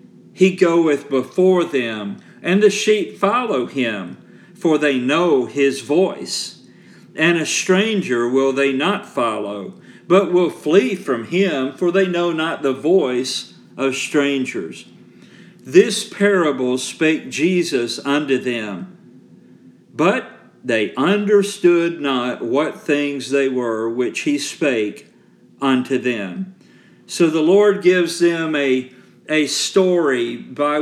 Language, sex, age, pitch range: English, male, 50-69, 130-175 Hz